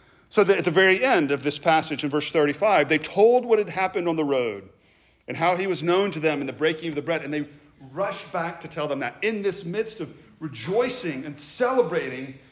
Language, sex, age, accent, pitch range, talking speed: English, male, 40-59, American, 140-175 Hz, 225 wpm